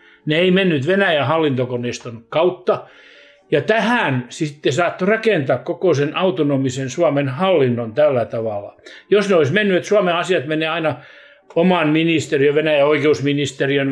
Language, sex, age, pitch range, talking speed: Finnish, male, 60-79, 125-155 Hz, 135 wpm